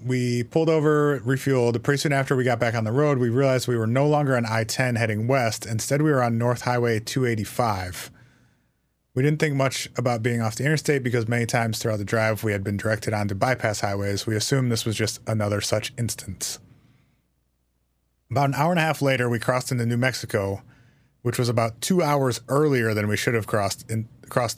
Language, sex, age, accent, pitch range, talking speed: English, male, 30-49, American, 110-130 Hz, 205 wpm